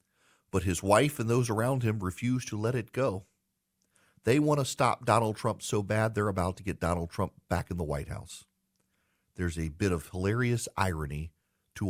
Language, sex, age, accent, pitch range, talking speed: English, male, 50-69, American, 95-120 Hz, 190 wpm